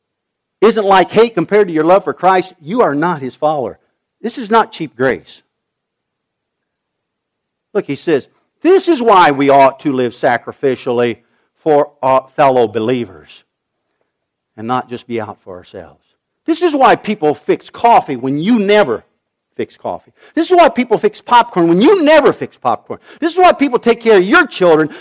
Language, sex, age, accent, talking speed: English, male, 50-69, American, 175 wpm